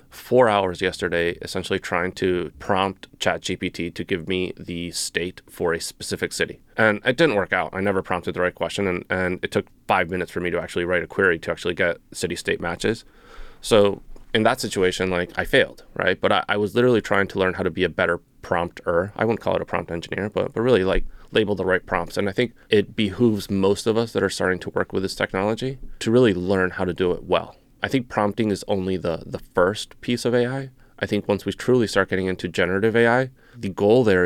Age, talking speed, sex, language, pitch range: 30-49, 235 wpm, male, English, 90-105 Hz